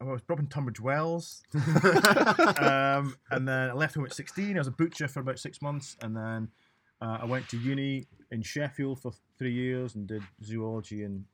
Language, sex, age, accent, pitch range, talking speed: English, male, 30-49, British, 100-130 Hz, 210 wpm